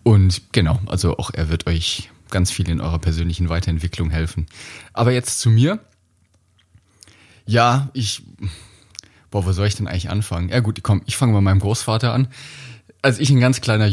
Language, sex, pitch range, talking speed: German, male, 90-110 Hz, 175 wpm